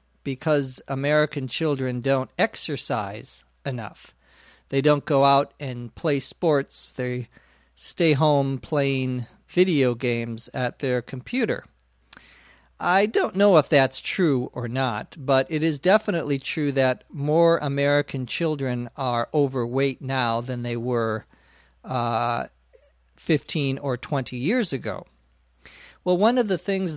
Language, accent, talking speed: Portuguese, American, 125 wpm